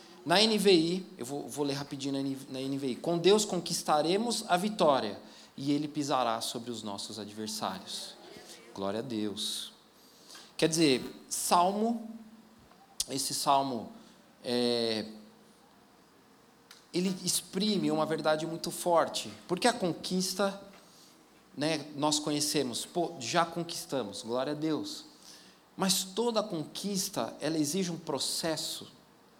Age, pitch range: 40-59, 135-185 Hz